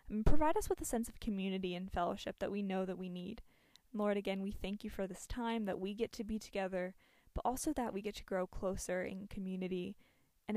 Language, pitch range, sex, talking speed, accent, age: English, 190-235 Hz, female, 235 wpm, American, 10-29